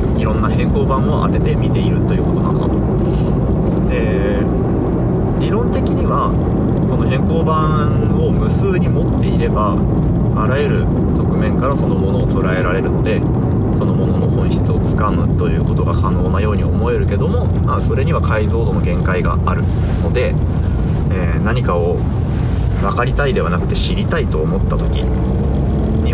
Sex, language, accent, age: male, Japanese, native, 30-49